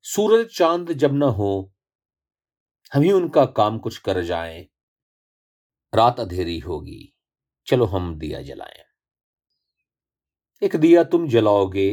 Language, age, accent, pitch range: Hindi, 40-59, native, 95-145 Hz